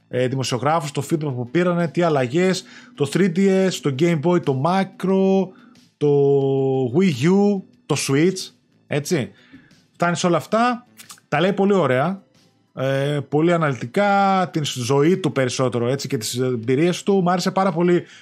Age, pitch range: 30-49, 140-180 Hz